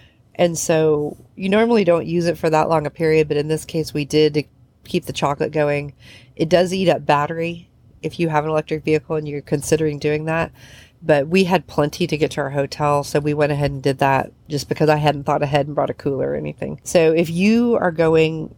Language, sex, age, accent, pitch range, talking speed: English, female, 40-59, American, 140-160 Hz, 230 wpm